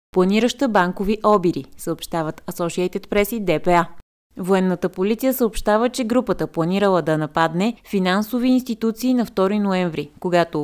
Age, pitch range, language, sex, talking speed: 20-39, 175-220 Hz, Bulgarian, female, 125 wpm